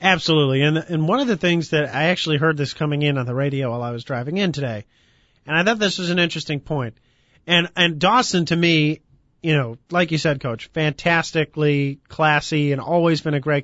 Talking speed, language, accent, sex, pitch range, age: 215 wpm, English, American, male, 145-175 Hz, 40-59